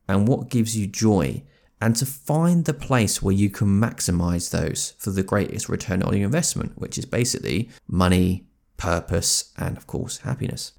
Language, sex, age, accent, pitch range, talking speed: English, male, 30-49, British, 95-135 Hz, 170 wpm